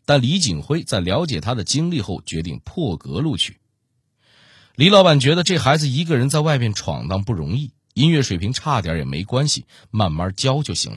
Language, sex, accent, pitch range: Chinese, male, native, 105-145 Hz